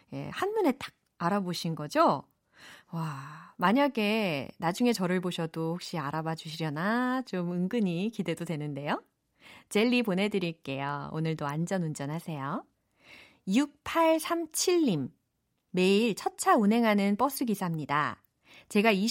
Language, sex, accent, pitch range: Korean, female, native, 170-260 Hz